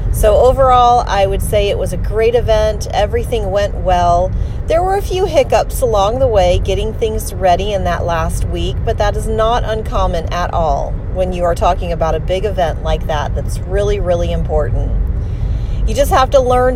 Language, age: English, 40-59